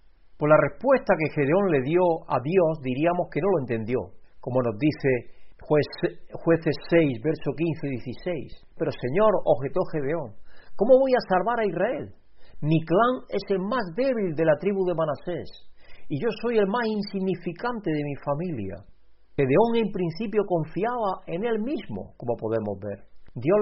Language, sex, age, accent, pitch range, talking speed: Spanish, male, 50-69, Spanish, 140-200 Hz, 170 wpm